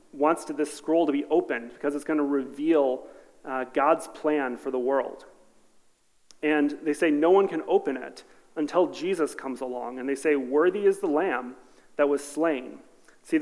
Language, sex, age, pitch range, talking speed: English, male, 40-59, 135-170 Hz, 185 wpm